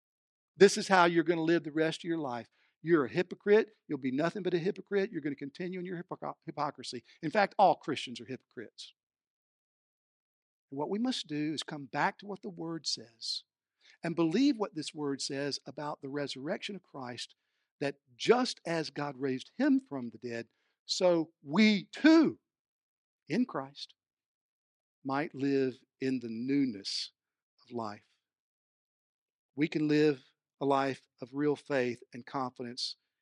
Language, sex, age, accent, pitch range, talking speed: English, male, 60-79, American, 140-230 Hz, 160 wpm